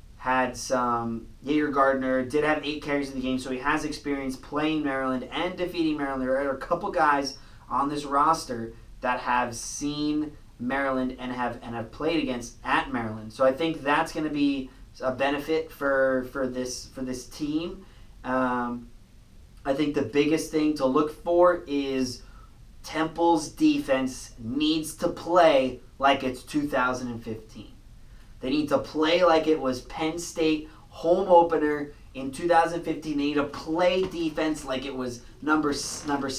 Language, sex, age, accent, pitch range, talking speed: English, male, 20-39, American, 130-155 Hz, 160 wpm